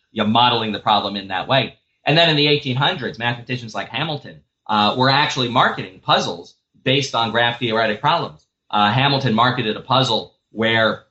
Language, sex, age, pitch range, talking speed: English, male, 30-49, 110-135 Hz, 165 wpm